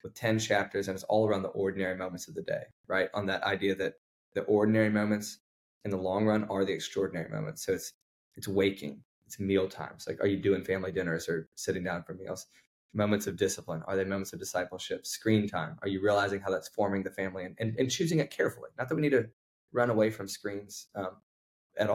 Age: 10-29